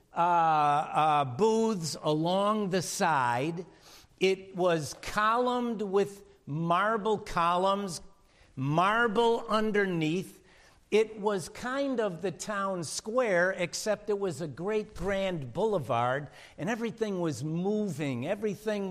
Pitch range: 165-215 Hz